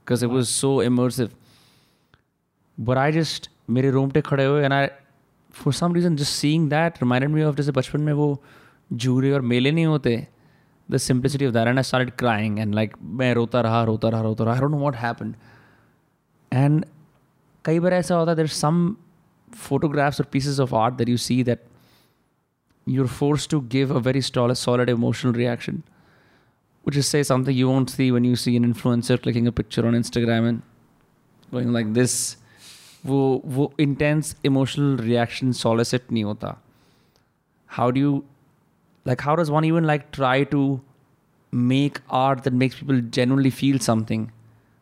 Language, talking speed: Hindi, 175 wpm